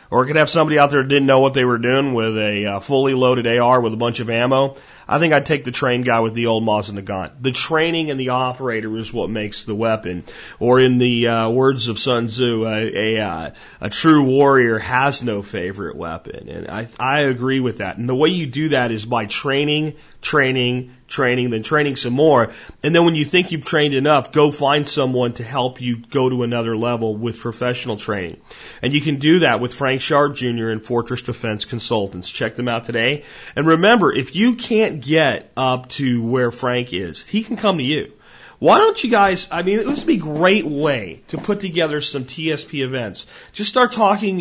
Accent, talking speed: American, 220 wpm